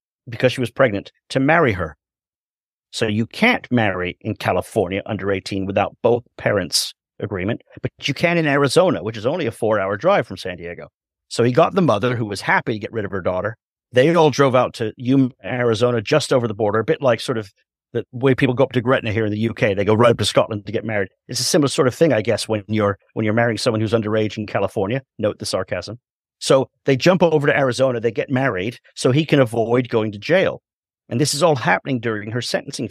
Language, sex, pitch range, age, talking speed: English, male, 105-135 Hz, 50-69, 230 wpm